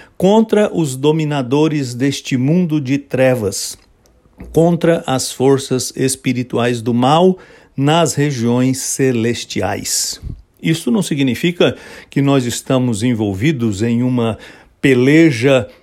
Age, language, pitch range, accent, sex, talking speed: 60-79, English, 120-150 Hz, Brazilian, male, 100 wpm